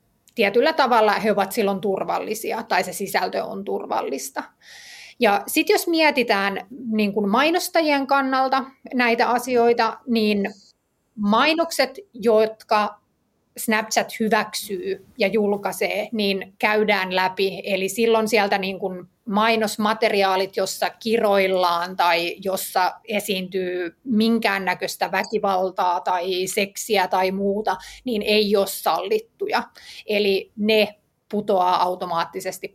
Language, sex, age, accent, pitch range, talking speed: Finnish, female, 30-49, native, 200-245 Hz, 95 wpm